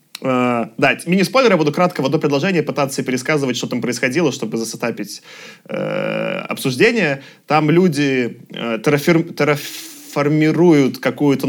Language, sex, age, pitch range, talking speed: Russian, male, 20-39, 130-165 Hz, 125 wpm